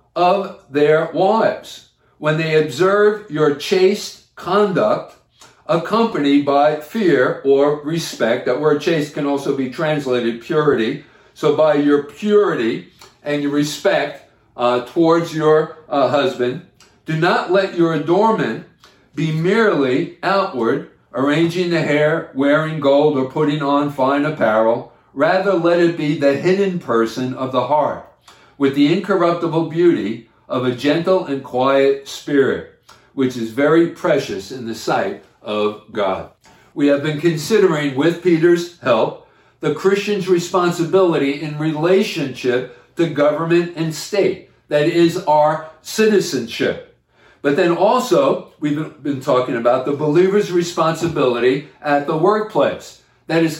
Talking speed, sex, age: 130 wpm, male, 50-69